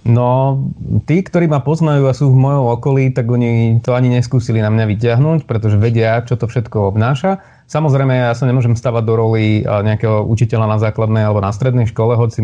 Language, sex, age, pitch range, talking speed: Slovak, male, 30-49, 110-130 Hz, 200 wpm